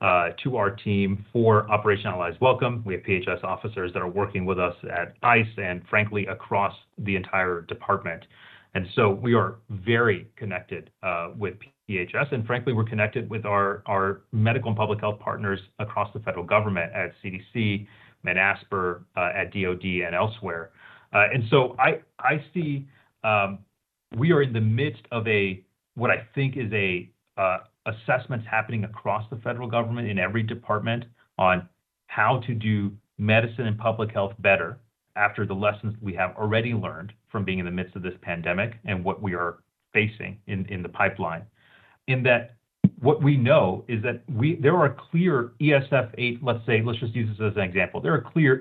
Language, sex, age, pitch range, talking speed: English, male, 30-49, 100-120 Hz, 175 wpm